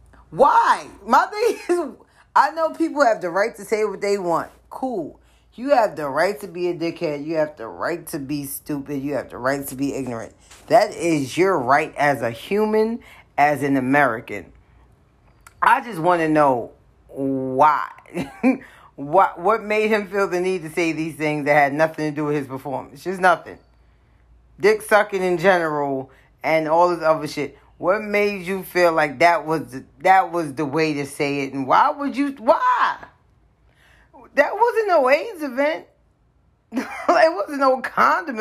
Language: English